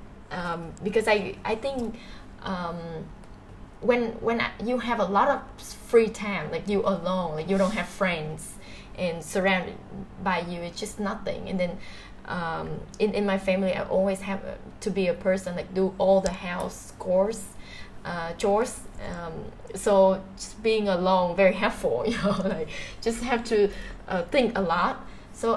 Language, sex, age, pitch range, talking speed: English, female, 10-29, 180-210 Hz, 170 wpm